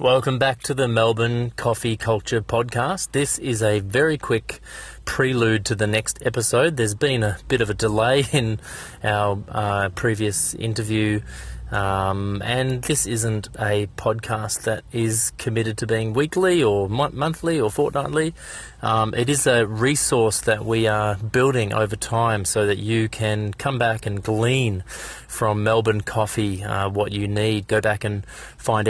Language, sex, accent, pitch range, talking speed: English, male, Australian, 105-125 Hz, 160 wpm